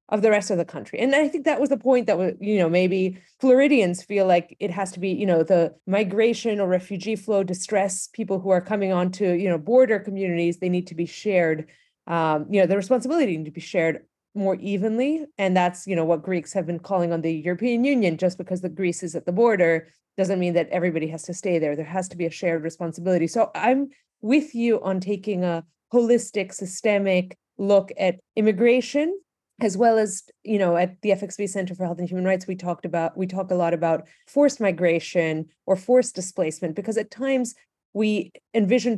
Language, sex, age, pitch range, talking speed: English, female, 30-49, 175-210 Hz, 210 wpm